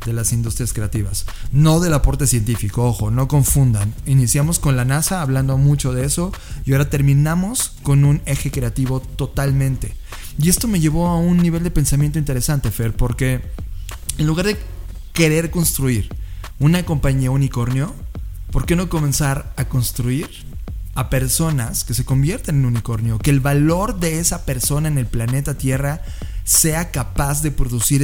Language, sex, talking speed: Spanish, male, 160 wpm